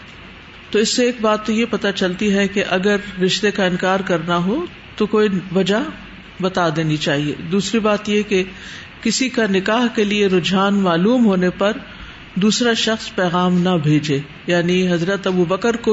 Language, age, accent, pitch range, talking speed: English, 50-69, Indian, 180-225 Hz, 175 wpm